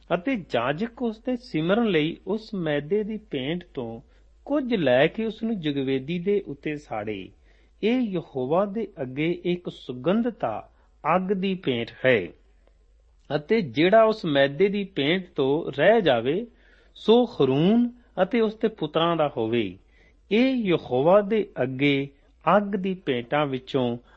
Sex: male